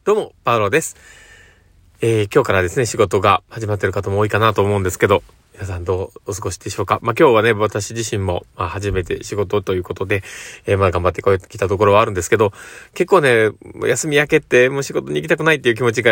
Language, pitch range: Japanese, 100-125 Hz